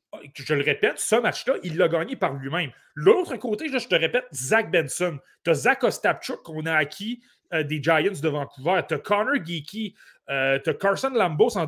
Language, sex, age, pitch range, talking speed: French, male, 30-49, 160-240 Hz, 200 wpm